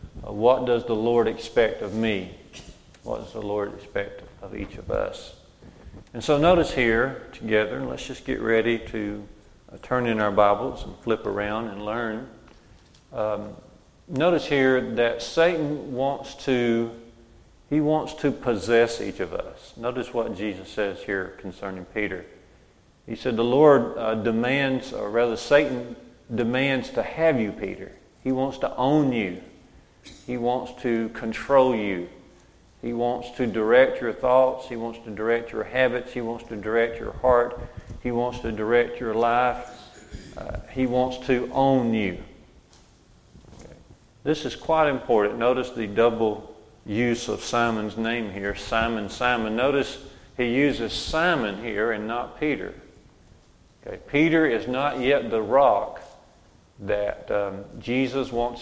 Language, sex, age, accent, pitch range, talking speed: English, male, 40-59, American, 110-130 Hz, 145 wpm